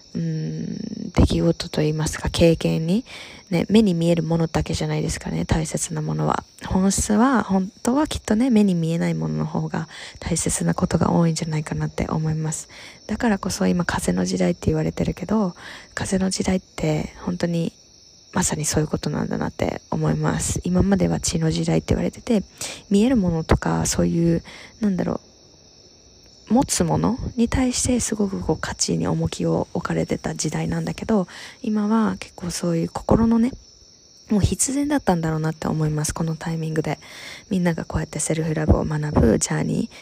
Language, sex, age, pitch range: Japanese, female, 20-39, 155-200 Hz